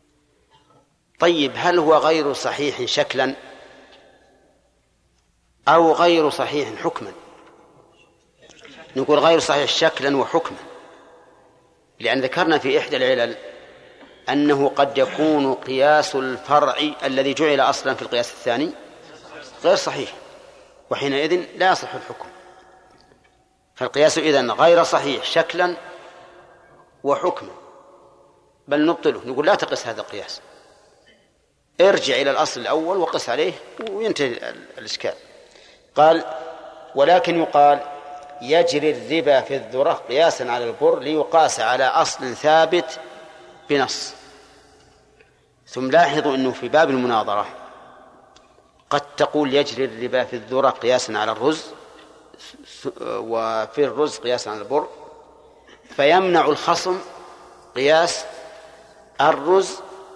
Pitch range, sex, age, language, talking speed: 140-170 Hz, male, 50-69, Arabic, 95 wpm